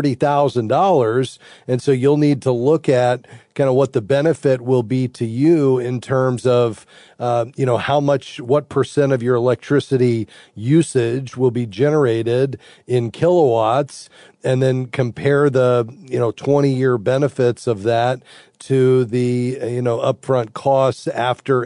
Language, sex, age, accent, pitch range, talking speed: English, male, 40-59, American, 120-140 Hz, 145 wpm